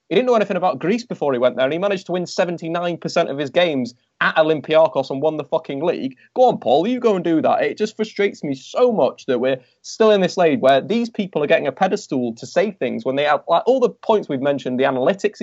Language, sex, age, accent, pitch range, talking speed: English, male, 20-39, British, 155-210 Hz, 260 wpm